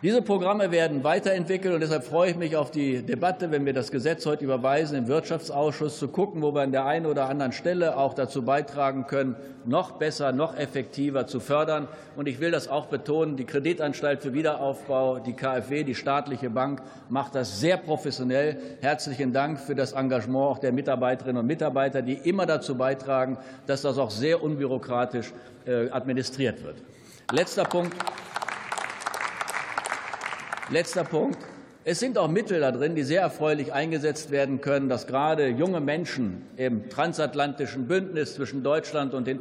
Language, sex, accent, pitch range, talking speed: German, male, German, 130-150 Hz, 165 wpm